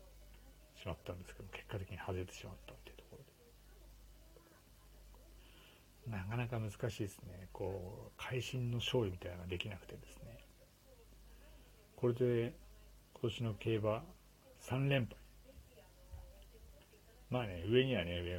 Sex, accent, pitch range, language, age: male, native, 95-125 Hz, Japanese, 60-79